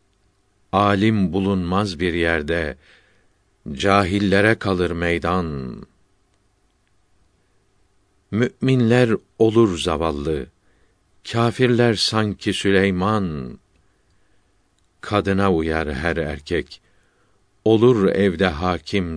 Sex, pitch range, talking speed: male, 90-100 Hz, 65 wpm